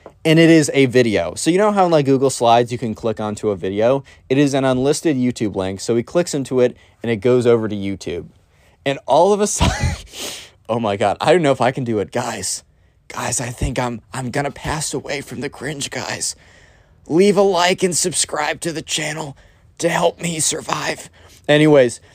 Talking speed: 210 wpm